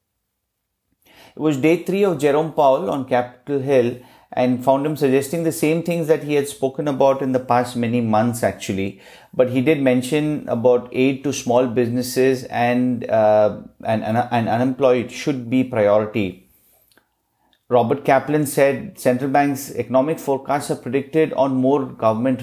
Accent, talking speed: Indian, 155 wpm